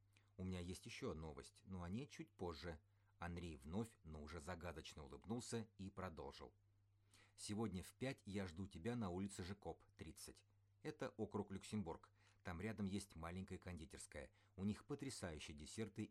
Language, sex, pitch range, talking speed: Russian, male, 90-105 Hz, 150 wpm